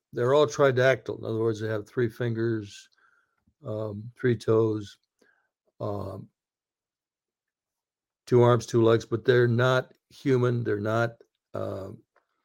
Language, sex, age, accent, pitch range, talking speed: English, male, 60-79, American, 110-125 Hz, 120 wpm